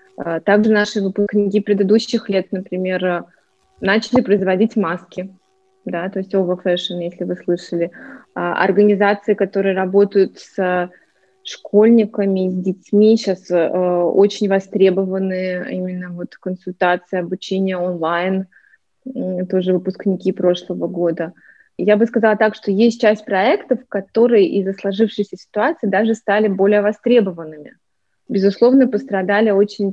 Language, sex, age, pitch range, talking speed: Russian, female, 20-39, 180-210 Hz, 110 wpm